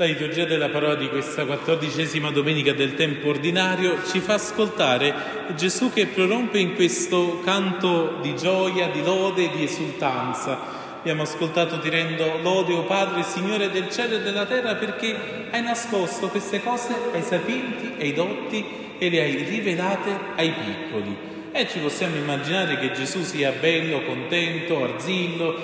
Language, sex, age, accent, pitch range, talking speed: Italian, male, 40-59, native, 160-195 Hz, 155 wpm